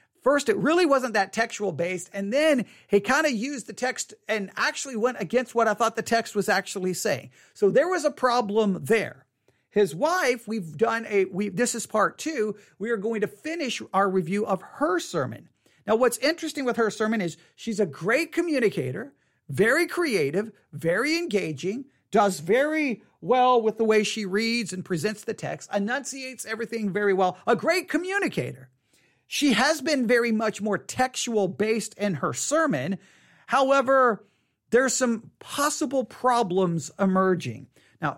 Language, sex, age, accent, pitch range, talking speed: English, male, 40-59, American, 190-255 Hz, 165 wpm